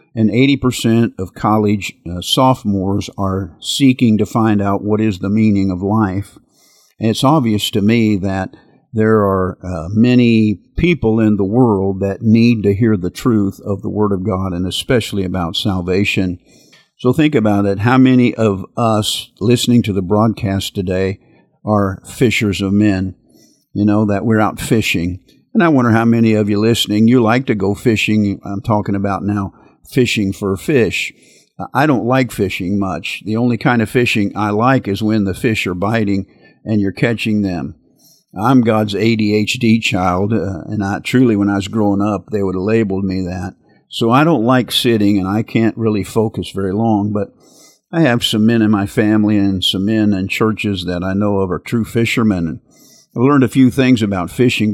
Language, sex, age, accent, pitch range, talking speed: English, male, 50-69, American, 100-115 Hz, 185 wpm